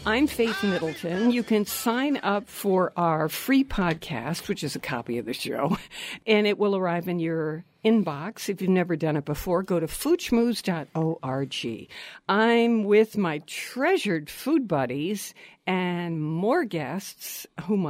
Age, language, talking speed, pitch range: 60-79, English, 150 wpm, 170-225 Hz